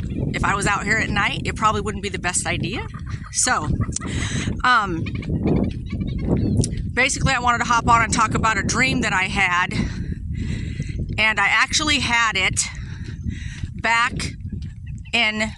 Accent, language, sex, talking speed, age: American, English, female, 145 wpm, 40-59